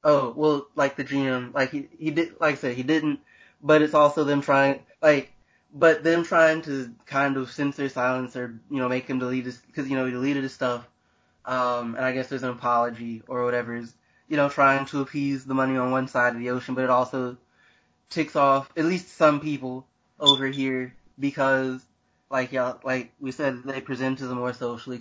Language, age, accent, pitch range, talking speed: English, 20-39, American, 125-145 Hz, 210 wpm